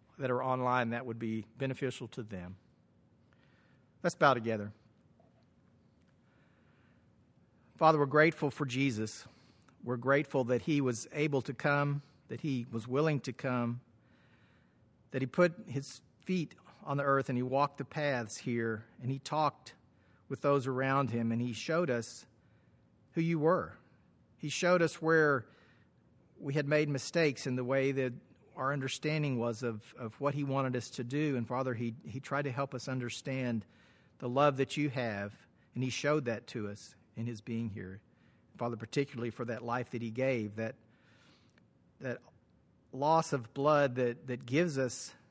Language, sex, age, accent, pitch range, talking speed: English, male, 40-59, American, 120-145 Hz, 165 wpm